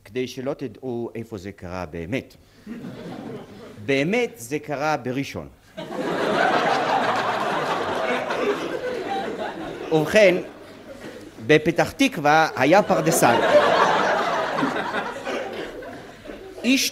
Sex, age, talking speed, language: male, 50-69, 60 wpm, Hebrew